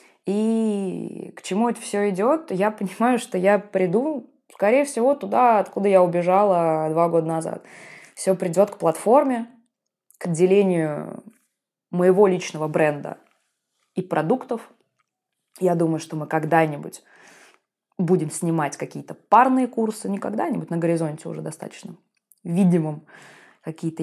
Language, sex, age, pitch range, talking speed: Russian, female, 20-39, 165-225 Hz, 120 wpm